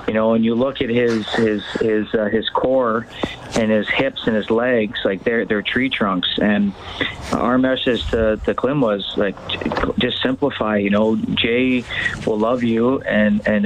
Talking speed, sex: 180 wpm, male